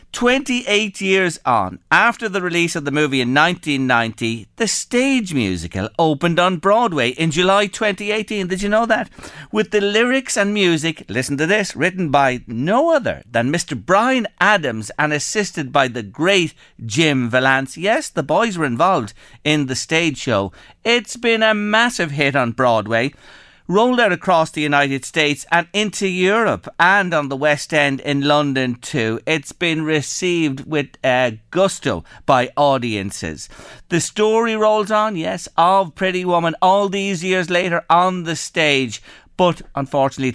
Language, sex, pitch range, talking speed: English, male, 140-210 Hz, 155 wpm